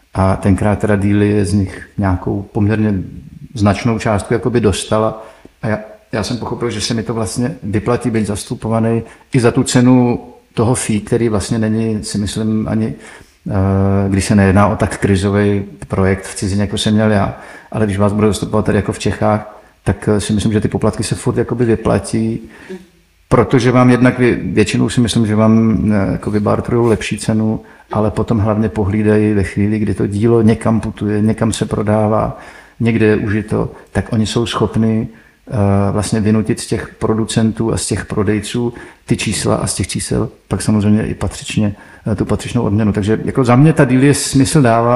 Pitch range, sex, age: 105-115 Hz, male, 50-69